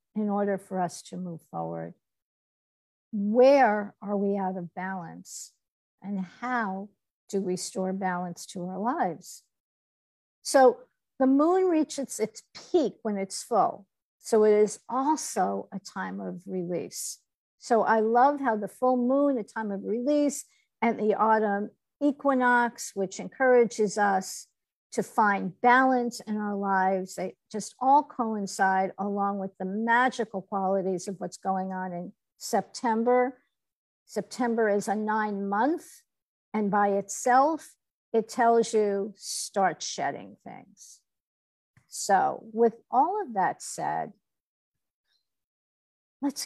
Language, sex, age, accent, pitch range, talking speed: English, female, 50-69, American, 195-250 Hz, 130 wpm